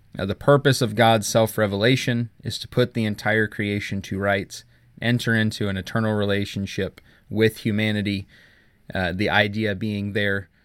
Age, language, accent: 20-39, English, American